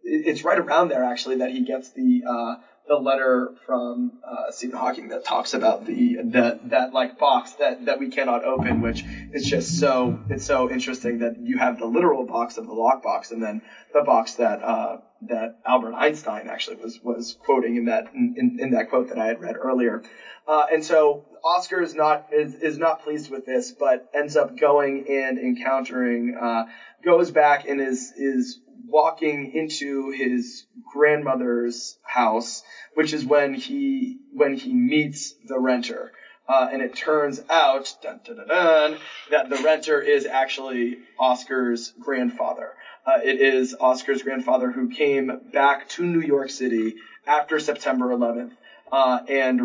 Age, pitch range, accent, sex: 20-39, 125-165 Hz, American, male